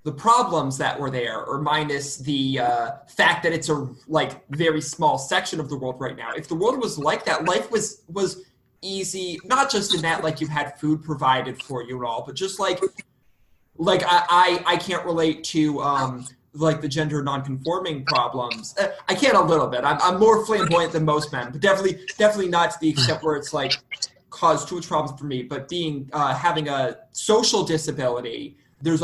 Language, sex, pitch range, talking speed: English, male, 135-160 Hz, 200 wpm